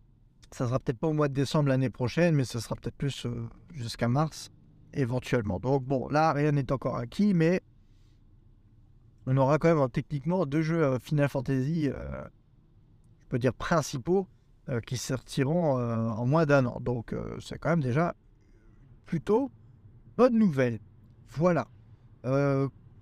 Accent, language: French, French